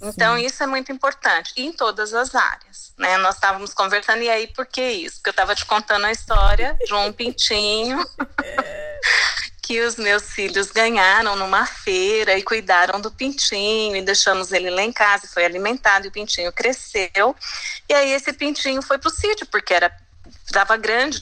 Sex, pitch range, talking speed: female, 205-290 Hz, 185 wpm